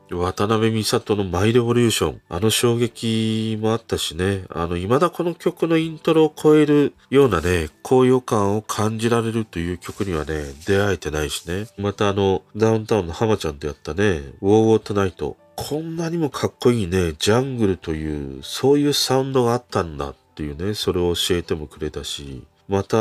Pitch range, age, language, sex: 90-130 Hz, 40-59, Japanese, male